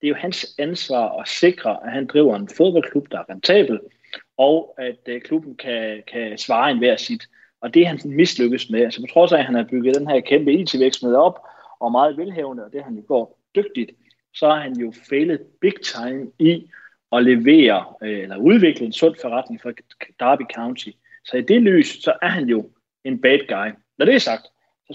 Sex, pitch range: male, 120-170 Hz